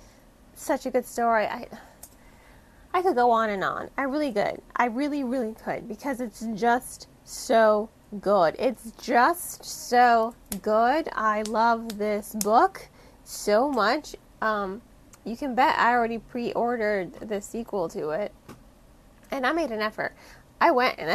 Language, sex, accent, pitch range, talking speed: English, female, American, 215-260 Hz, 150 wpm